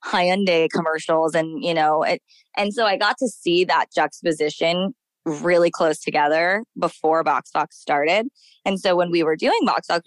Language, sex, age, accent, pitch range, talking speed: English, female, 20-39, American, 165-210 Hz, 175 wpm